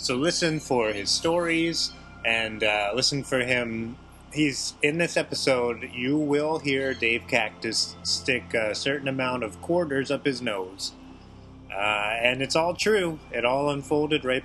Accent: American